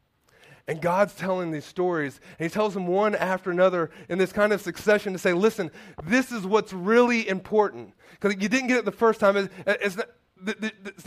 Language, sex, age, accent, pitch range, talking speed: English, male, 30-49, American, 180-230 Hz, 190 wpm